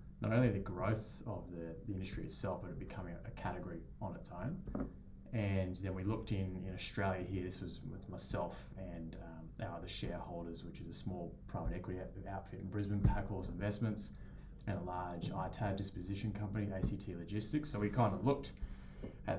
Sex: male